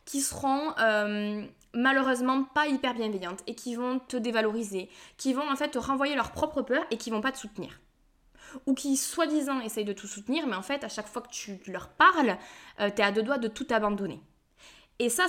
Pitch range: 210-275 Hz